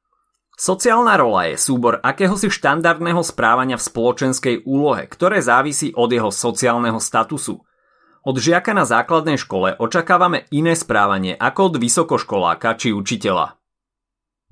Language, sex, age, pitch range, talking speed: Slovak, male, 30-49, 120-170 Hz, 120 wpm